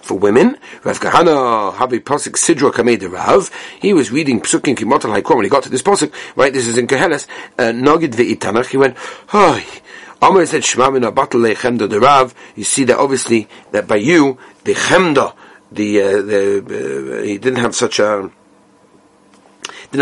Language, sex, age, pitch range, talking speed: English, male, 40-59, 120-165 Hz, 185 wpm